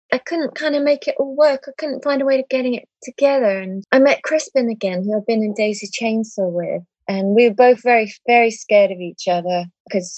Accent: British